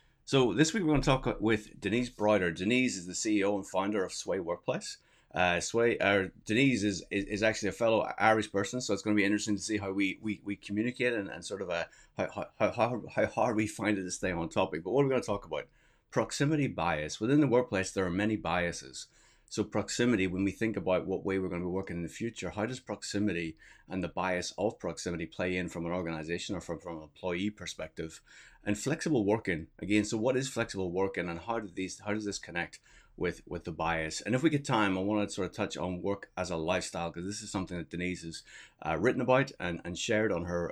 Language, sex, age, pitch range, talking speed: English, male, 30-49, 90-110 Hz, 240 wpm